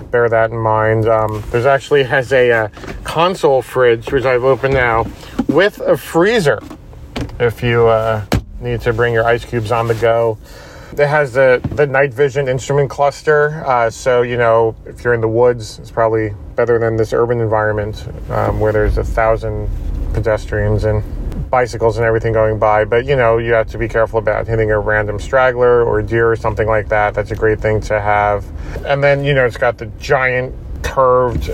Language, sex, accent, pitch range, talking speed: English, male, American, 110-130 Hz, 190 wpm